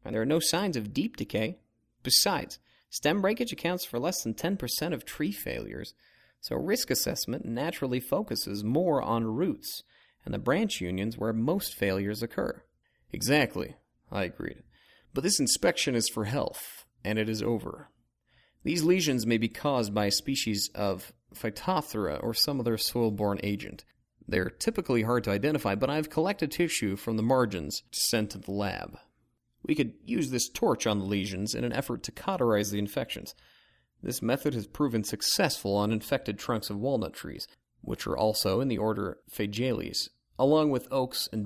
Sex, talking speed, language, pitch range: male, 170 wpm, English, 105-140 Hz